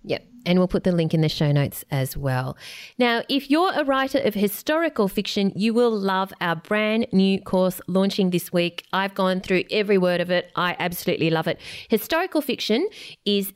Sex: female